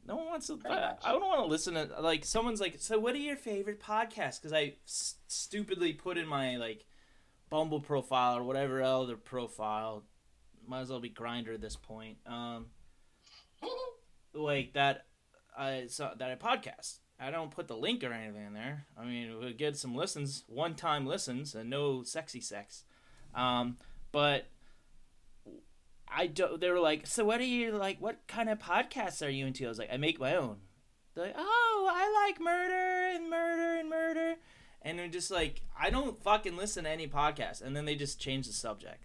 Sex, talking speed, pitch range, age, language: male, 190 wpm, 115-175 Hz, 20-39, English